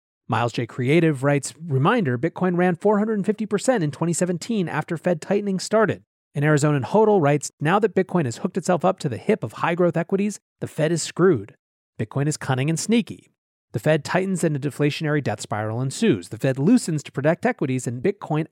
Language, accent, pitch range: English, American, 135-185 Hz